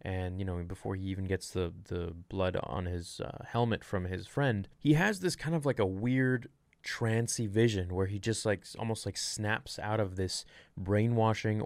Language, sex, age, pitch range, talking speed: English, male, 20-39, 95-130 Hz, 195 wpm